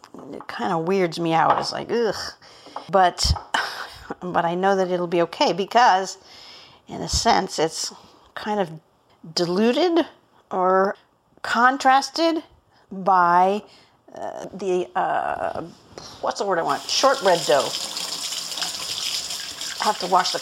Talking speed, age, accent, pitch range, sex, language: 130 wpm, 50-69, American, 175-235 Hz, female, English